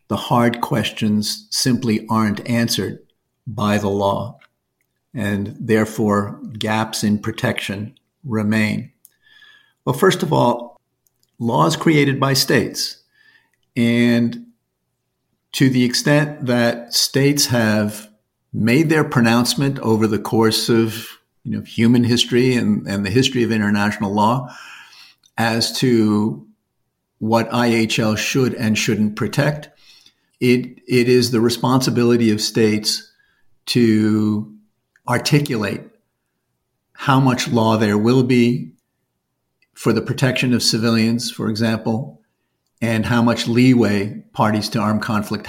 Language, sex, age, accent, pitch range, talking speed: English, male, 50-69, American, 110-125 Hz, 110 wpm